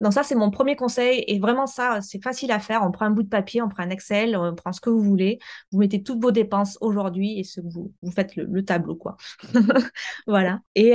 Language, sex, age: French, female, 20-39